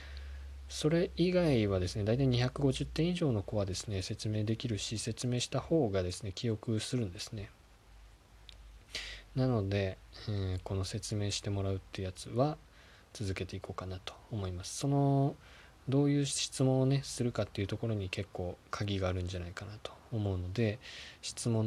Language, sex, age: Japanese, male, 20-39